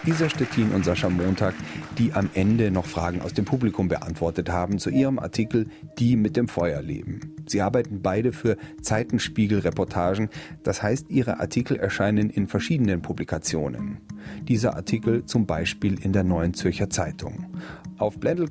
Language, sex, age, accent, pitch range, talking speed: German, male, 40-59, German, 85-115 Hz, 150 wpm